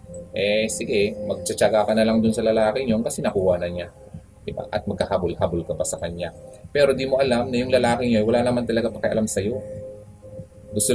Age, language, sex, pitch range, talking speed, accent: 20-39, Filipino, male, 100-130 Hz, 185 wpm, native